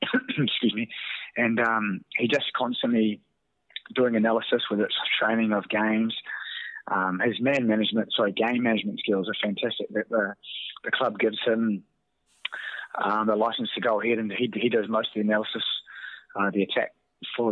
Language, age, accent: English, 20-39, Australian